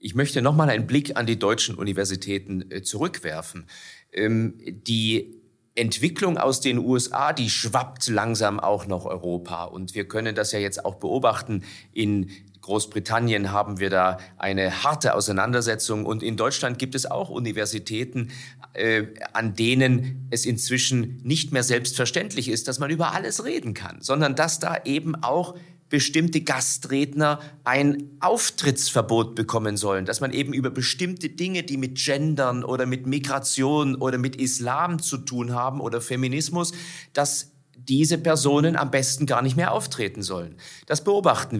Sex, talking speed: male, 145 wpm